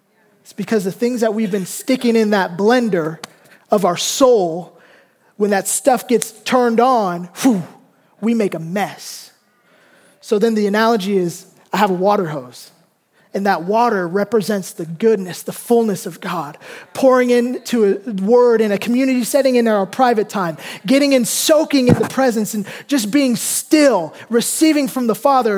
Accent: American